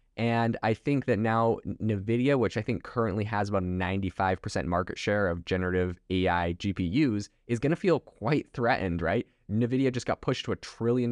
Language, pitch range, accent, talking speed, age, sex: English, 95-115 Hz, American, 180 wpm, 20-39, male